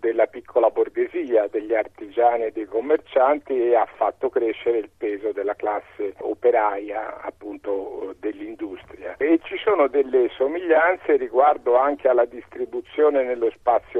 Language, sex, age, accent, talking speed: Italian, male, 50-69, native, 130 wpm